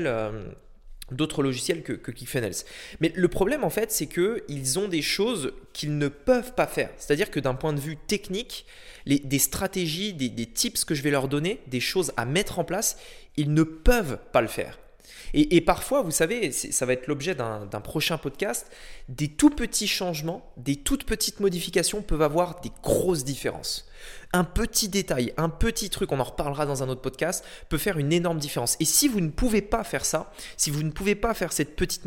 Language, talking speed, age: French, 205 wpm, 20-39